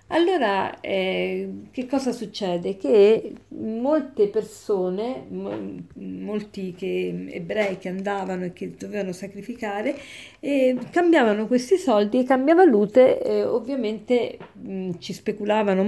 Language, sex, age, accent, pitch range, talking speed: Italian, female, 50-69, native, 190-250 Hz, 95 wpm